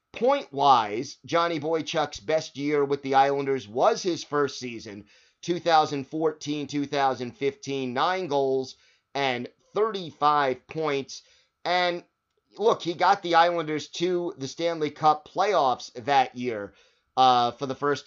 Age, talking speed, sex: 30-49, 115 wpm, male